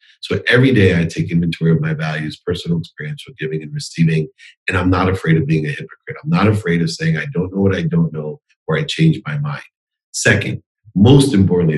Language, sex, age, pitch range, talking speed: English, male, 40-59, 85-135 Hz, 220 wpm